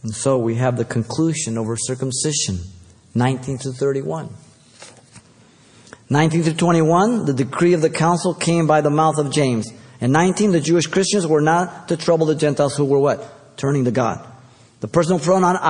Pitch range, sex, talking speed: 120-160 Hz, male, 170 wpm